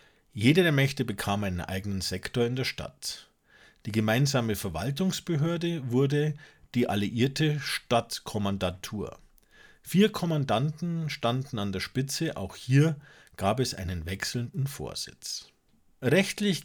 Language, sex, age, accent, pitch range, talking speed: German, male, 40-59, German, 110-150 Hz, 110 wpm